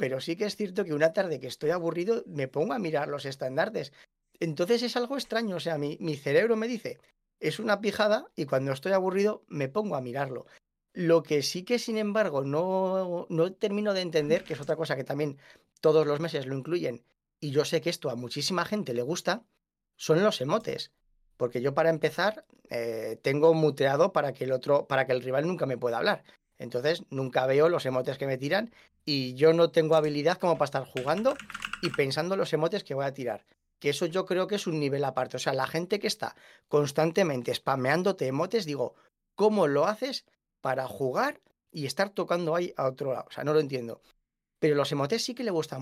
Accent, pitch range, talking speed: Spanish, 135-195 Hz, 210 wpm